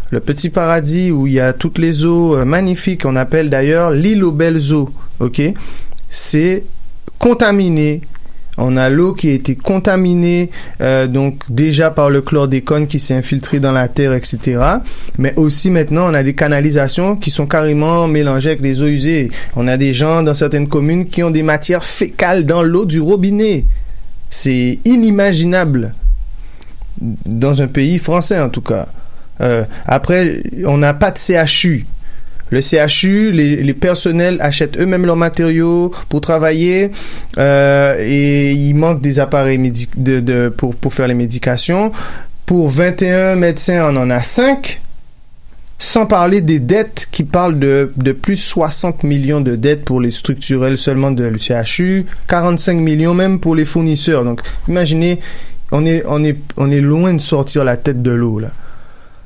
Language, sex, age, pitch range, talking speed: French, male, 30-49, 135-175 Hz, 165 wpm